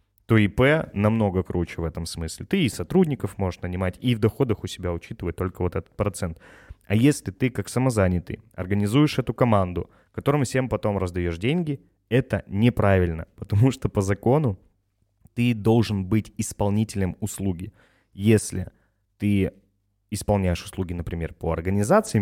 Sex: male